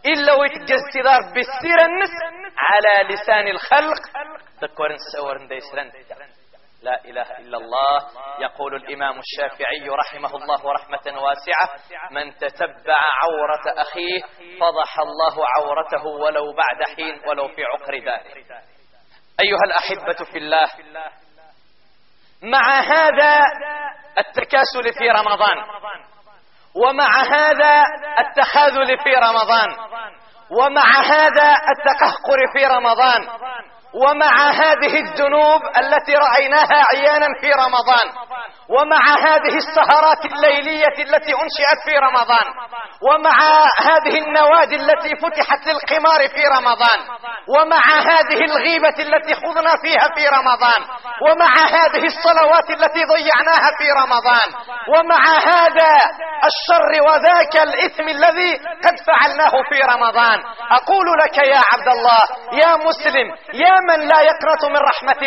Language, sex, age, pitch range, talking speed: Arabic, male, 30-49, 230-310 Hz, 105 wpm